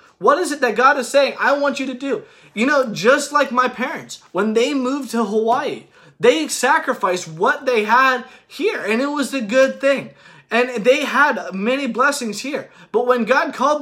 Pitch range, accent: 220-275 Hz, American